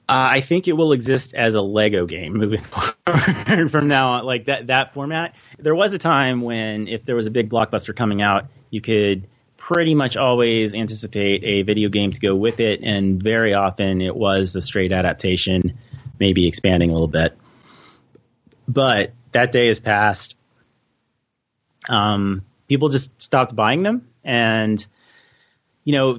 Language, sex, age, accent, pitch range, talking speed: English, male, 30-49, American, 105-130 Hz, 165 wpm